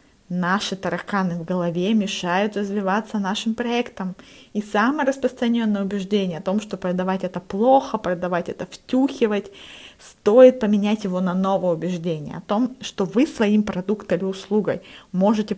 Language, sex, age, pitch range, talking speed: Russian, female, 20-39, 185-215 Hz, 140 wpm